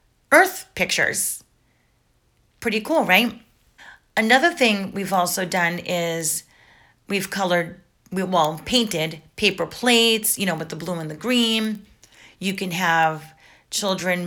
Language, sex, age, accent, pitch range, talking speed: English, female, 30-49, American, 165-215 Hz, 120 wpm